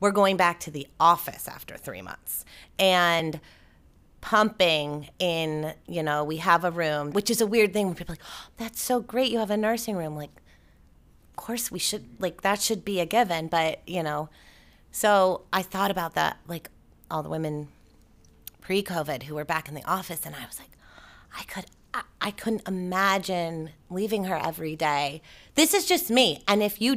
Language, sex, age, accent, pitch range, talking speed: English, female, 30-49, American, 150-195 Hz, 185 wpm